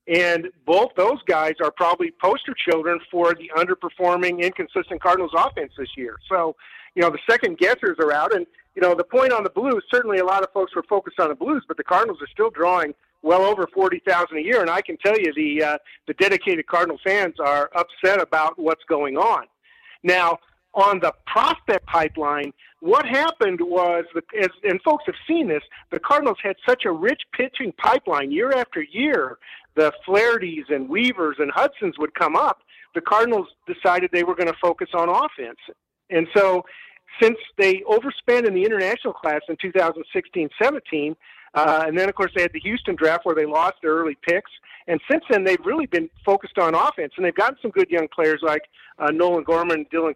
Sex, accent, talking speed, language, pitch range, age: male, American, 195 wpm, English, 160-210 Hz, 50-69